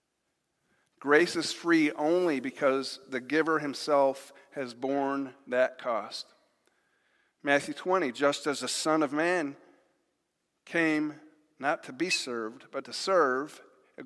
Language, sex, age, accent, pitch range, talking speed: English, male, 40-59, American, 140-180 Hz, 125 wpm